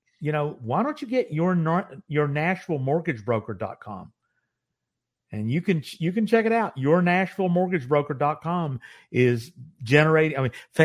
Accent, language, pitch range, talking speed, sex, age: American, English, 130-185 Hz, 155 wpm, male, 50-69